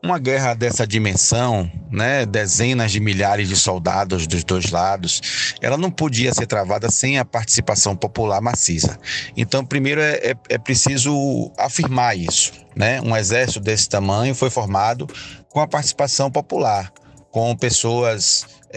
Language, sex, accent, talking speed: Portuguese, male, Brazilian, 135 wpm